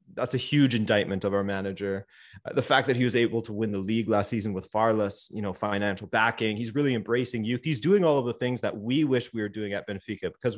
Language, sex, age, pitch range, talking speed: English, male, 20-39, 100-125 Hz, 260 wpm